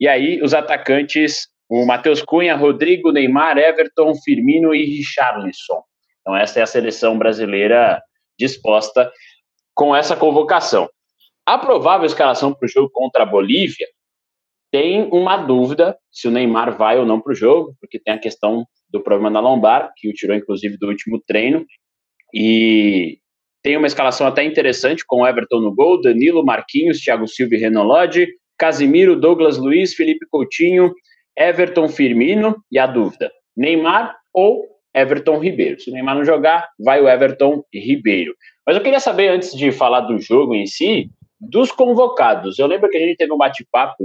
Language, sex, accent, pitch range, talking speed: Portuguese, male, Brazilian, 125-210 Hz, 165 wpm